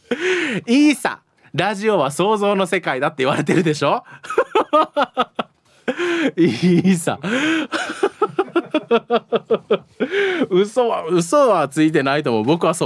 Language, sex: Japanese, male